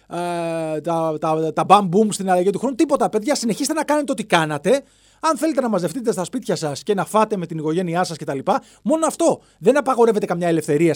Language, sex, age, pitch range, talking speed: Greek, male, 30-49, 150-250 Hz, 190 wpm